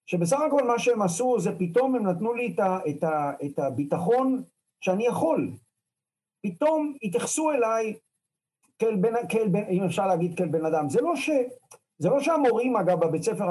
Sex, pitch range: male, 165-225 Hz